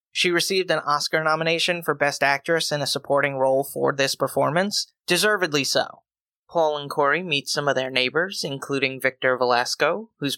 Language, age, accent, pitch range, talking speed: English, 30-49, American, 140-175 Hz, 170 wpm